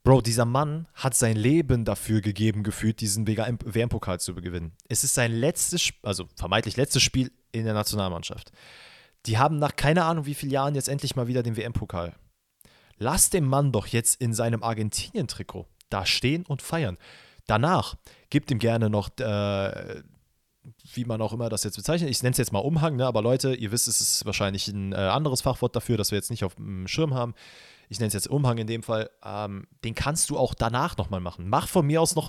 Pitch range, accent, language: 110-150 Hz, German, German